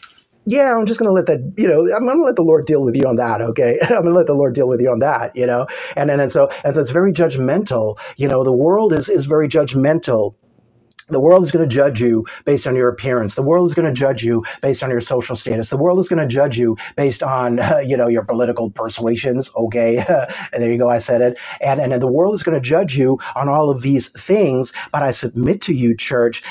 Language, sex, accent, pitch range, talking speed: English, male, American, 120-145 Hz, 265 wpm